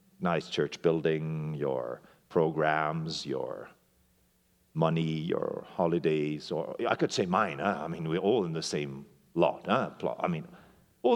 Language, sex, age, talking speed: English, male, 50-69, 135 wpm